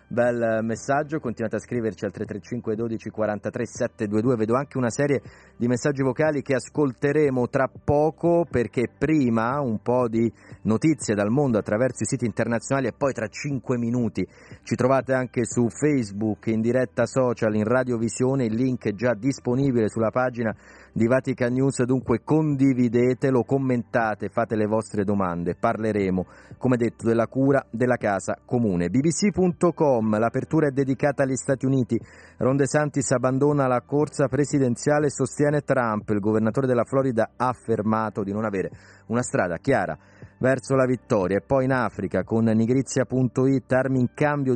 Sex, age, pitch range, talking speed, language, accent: male, 30-49, 110-135 Hz, 150 wpm, Italian, native